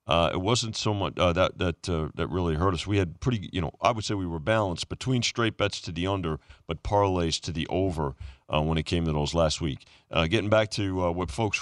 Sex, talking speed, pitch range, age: male, 260 wpm, 80-100 Hz, 40-59